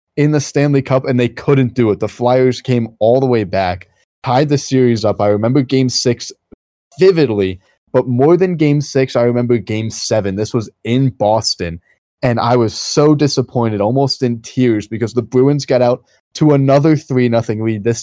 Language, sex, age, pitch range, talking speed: English, male, 20-39, 105-130 Hz, 190 wpm